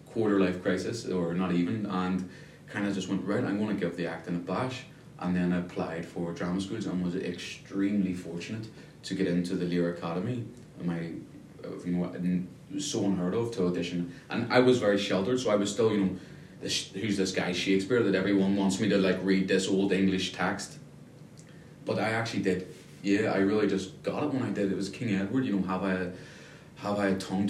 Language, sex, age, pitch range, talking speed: English, male, 20-39, 90-100 Hz, 215 wpm